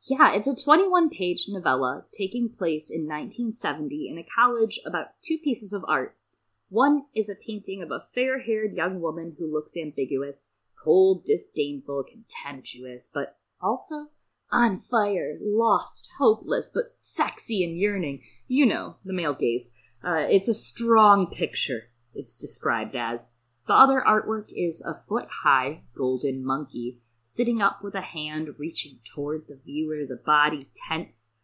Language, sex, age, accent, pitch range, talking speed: English, female, 20-39, American, 140-230 Hz, 145 wpm